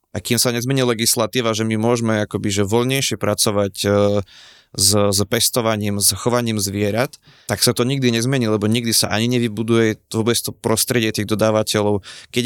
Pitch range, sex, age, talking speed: 105-120 Hz, male, 20-39, 165 wpm